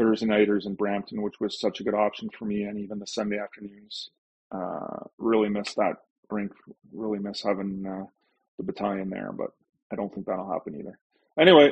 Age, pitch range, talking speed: 30-49, 100-125 Hz, 190 wpm